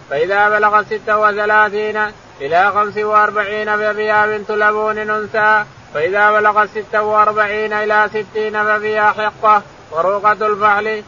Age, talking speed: 20-39, 95 wpm